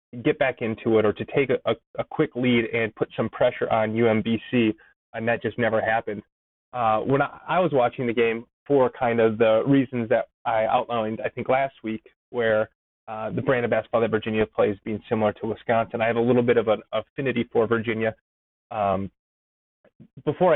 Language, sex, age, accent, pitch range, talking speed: English, male, 30-49, American, 110-135 Hz, 200 wpm